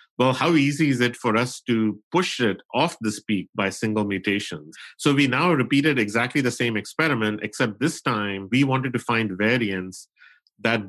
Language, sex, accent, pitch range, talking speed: English, male, Indian, 105-125 Hz, 180 wpm